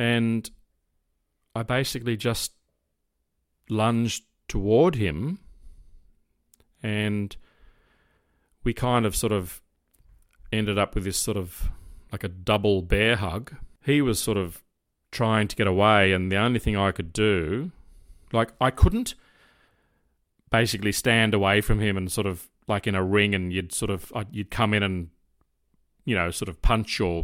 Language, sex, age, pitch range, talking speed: English, male, 30-49, 95-115 Hz, 150 wpm